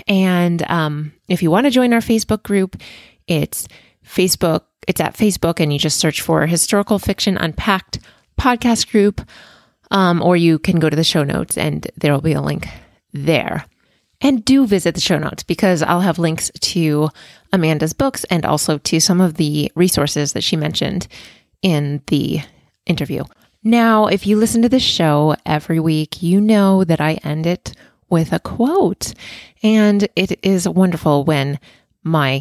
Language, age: English, 20-39